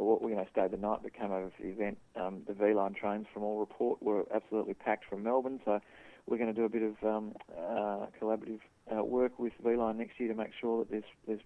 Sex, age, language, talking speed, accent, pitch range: male, 40-59, English, 265 wpm, Australian, 105-120 Hz